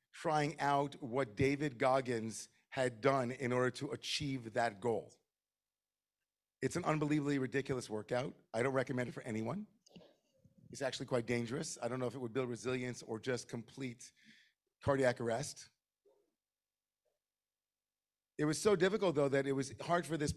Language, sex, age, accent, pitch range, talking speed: English, male, 40-59, American, 125-155 Hz, 155 wpm